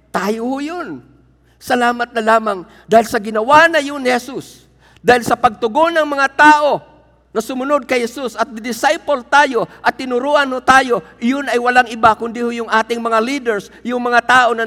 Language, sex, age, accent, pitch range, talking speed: Filipino, male, 50-69, native, 180-235 Hz, 170 wpm